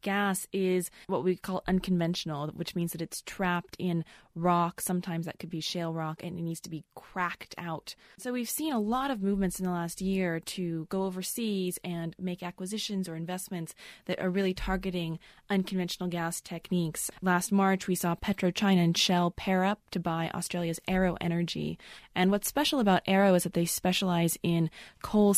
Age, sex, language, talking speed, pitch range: 20-39, female, English, 180 wpm, 160-185 Hz